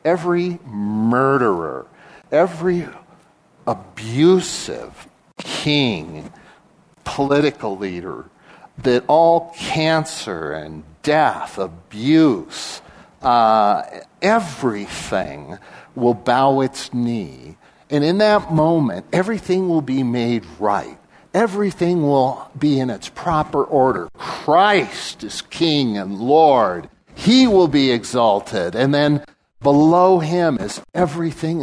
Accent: American